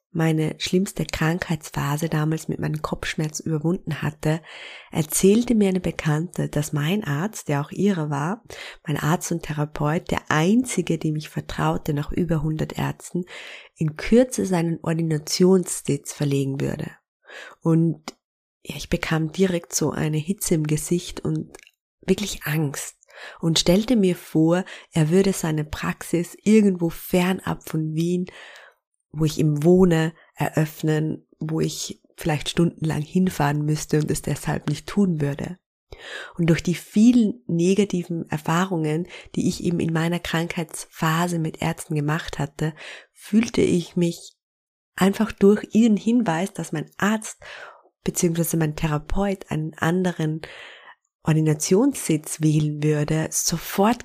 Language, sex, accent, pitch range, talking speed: German, female, German, 155-185 Hz, 130 wpm